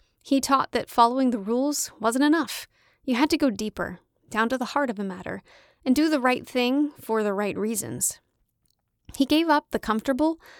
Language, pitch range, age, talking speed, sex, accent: English, 210-285 Hz, 30-49, 195 wpm, female, American